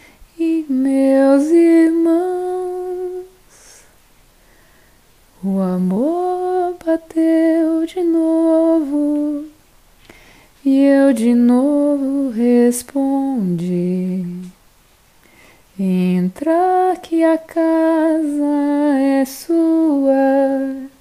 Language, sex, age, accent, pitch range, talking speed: Portuguese, female, 20-39, Brazilian, 245-320 Hz, 55 wpm